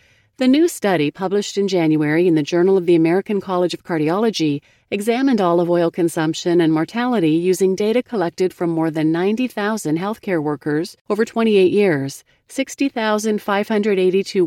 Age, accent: 40-59, American